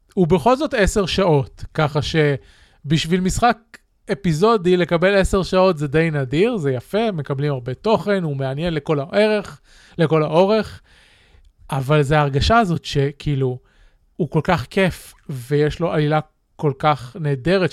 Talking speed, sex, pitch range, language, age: 140 wpm, male, 140-185 Hz, Hebrew, 30-49